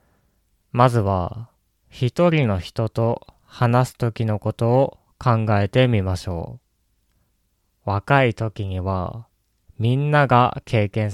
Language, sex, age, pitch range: Japanese, male, 20-39, 95-125 Hz